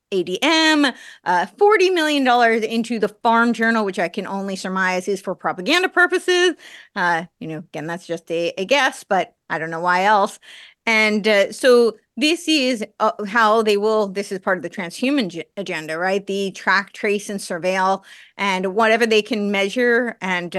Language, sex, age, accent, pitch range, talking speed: English, female, 30-49, American, 180-215 Hz, 175 wpm